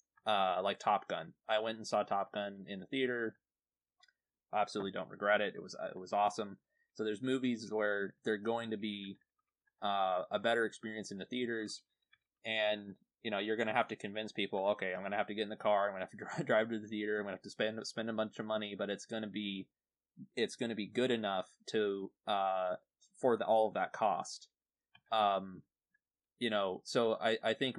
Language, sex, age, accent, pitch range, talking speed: English, male, 20-39, American, 100-115 Hz, 225 wpm